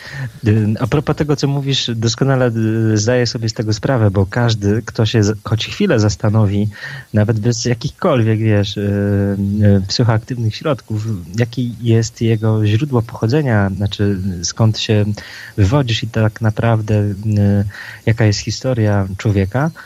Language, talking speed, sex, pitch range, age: Polish, 120 wpm, male, 100-125 Hz, 20-39